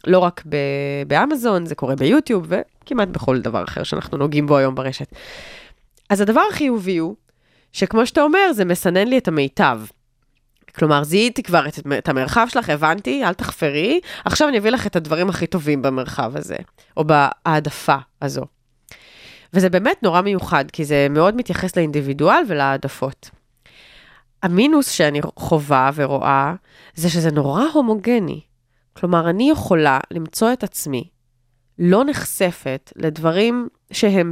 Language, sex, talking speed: Hebrew, female, 135 wpm